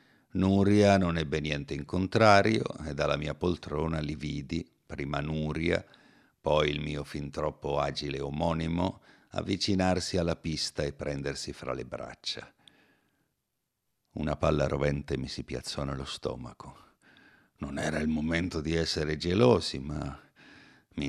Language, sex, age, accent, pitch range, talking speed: Italian, male, 60-79, native, 75-85 Hz, 130 wpm